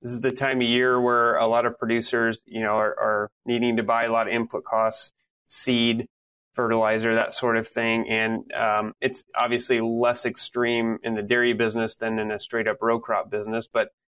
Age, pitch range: 30-49, 110-120 Hz